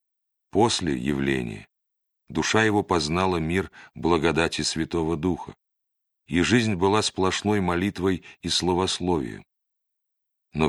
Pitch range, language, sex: 75-95 Hz, Russian, male